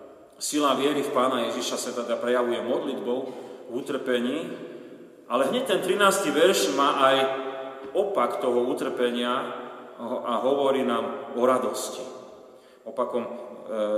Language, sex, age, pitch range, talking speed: Slovak, male, 40-59, 120-135 Hz, 110 wpm